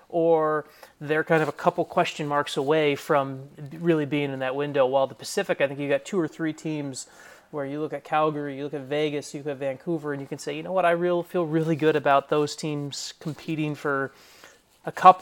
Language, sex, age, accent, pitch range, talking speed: English, male, 30-49, American, 140-165 Hz, 230 wpm